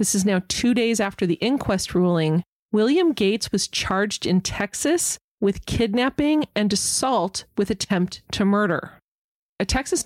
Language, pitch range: English, 190-255 Hz